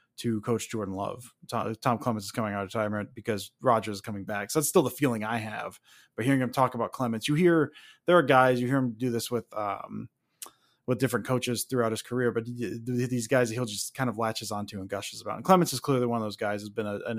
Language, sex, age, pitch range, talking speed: English, male, 20-39, 115-135 Hz, 255 wpm